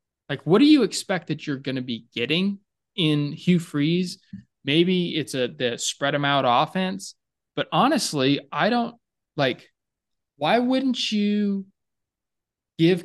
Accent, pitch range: American, 135-175 Hz